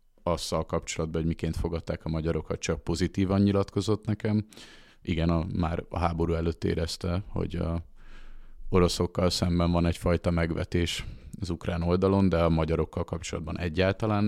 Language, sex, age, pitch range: Hungarian, male, 30-49, 80-90 Hz